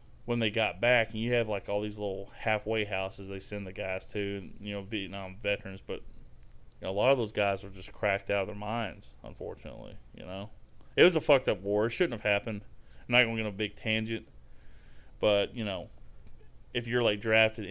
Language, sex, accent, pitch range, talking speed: English, male, American, 95-115 Hz, 220 wpm